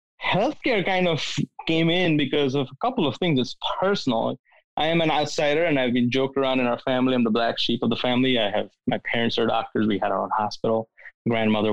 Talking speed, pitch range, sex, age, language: 225 wpm, 120-150 Hz, male, 20-39, English